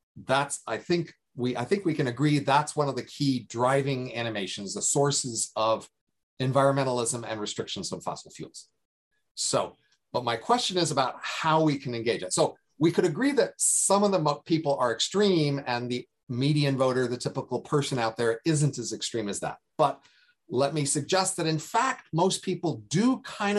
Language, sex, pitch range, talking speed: English, male, 125-160 Hz, 185 wpm